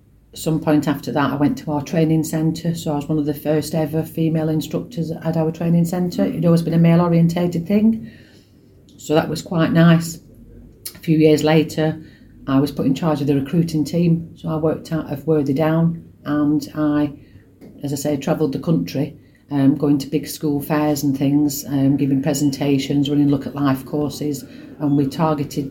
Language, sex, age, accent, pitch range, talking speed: English, female, 40-59, British, 130-150 Hz, 195 wpm